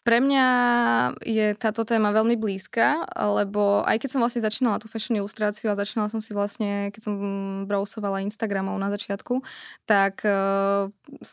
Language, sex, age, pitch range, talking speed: Slovak, female, 20-39, 195-220 Hz, 155 wpm